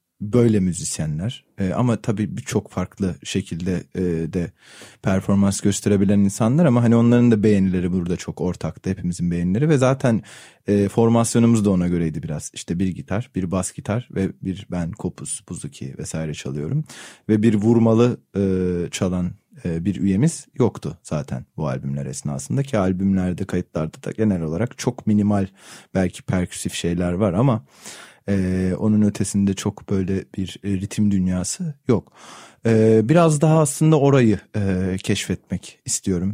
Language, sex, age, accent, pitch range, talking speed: Turkish, male, 30-49, native, 95-110 Hz, 140 wpm